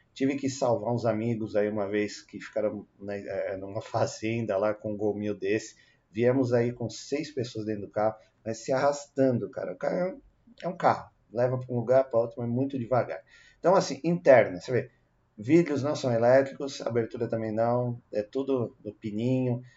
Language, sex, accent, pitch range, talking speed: Portuguese, male, Brazilian, 110-135 Hz, 180 wpm